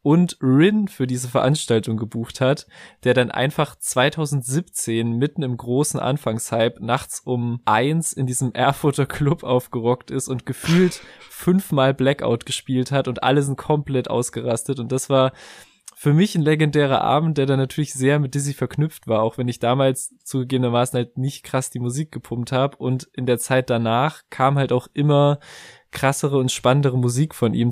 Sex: male